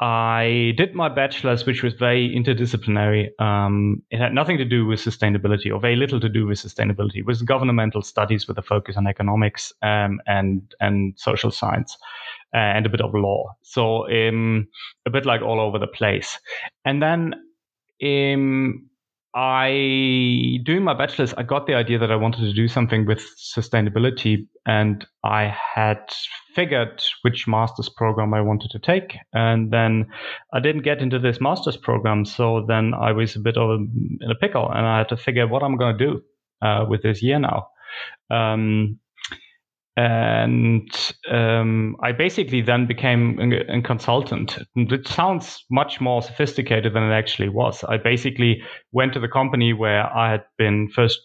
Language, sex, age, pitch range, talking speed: English, male, 30-49, 110-125 Hz, 170 wpm